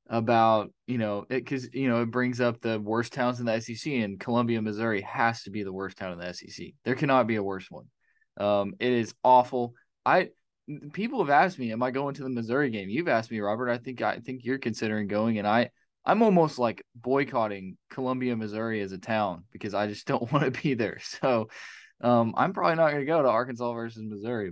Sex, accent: male, American